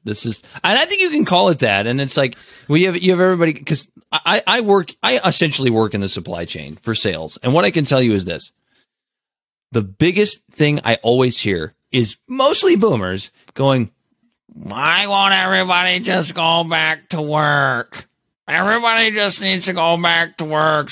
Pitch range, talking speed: 120-185 Hz, 190 wpm